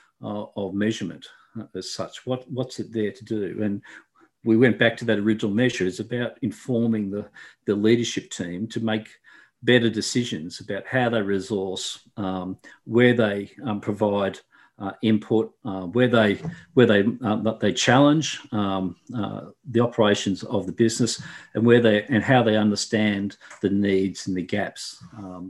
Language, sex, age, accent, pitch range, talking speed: English, male, 50-69, Australian, 100-120 Hz, 160 wpm